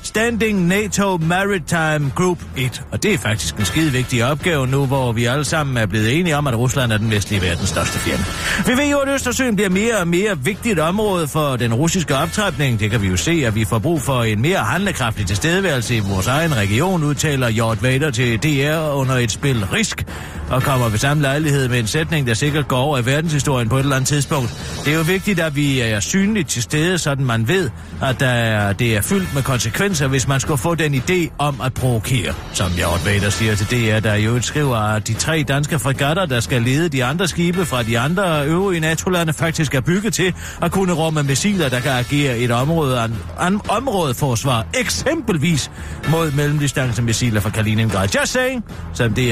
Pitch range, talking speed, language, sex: 115-170 Hz, 205 wpm, Danish, male